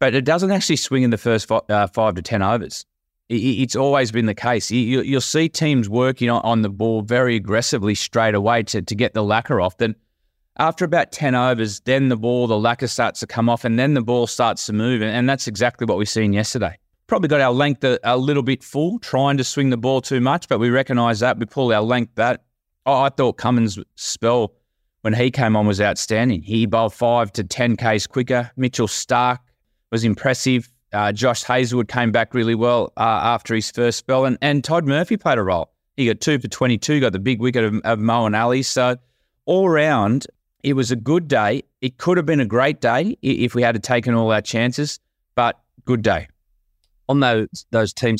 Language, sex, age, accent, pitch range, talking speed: English, male, 20-39, Australian, 105-125 Hz, 210 wpm